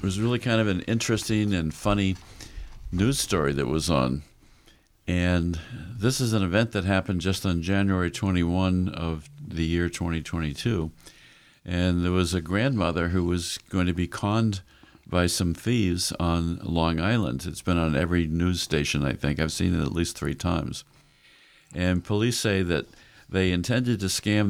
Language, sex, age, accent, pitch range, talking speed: English, male, 50-69, American, 85-105 Hz, 170 wpm